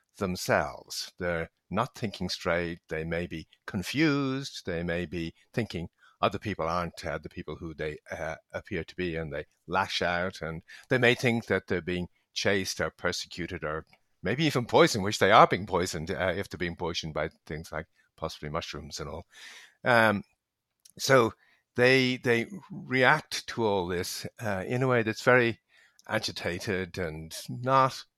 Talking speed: 165 wpm